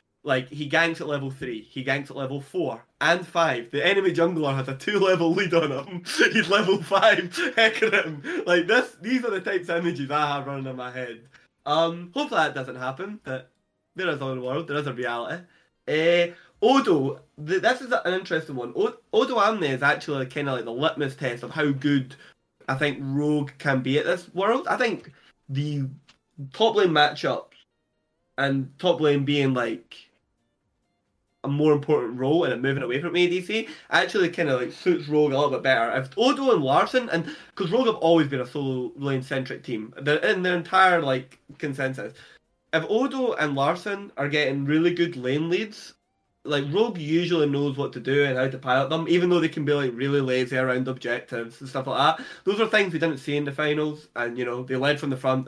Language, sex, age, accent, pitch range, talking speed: English, male, 20-39, British, 135-175 Hz, 205 wpm